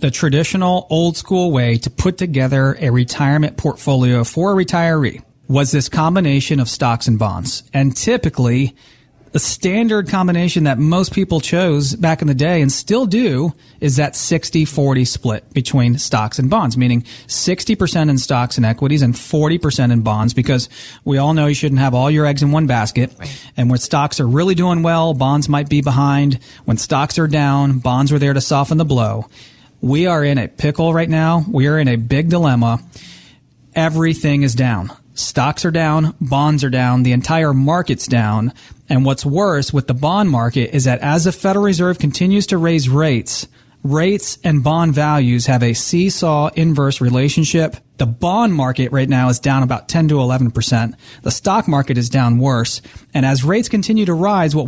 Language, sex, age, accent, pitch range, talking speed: English, male, 30-49, American, 130-165 Hz, 180 wpm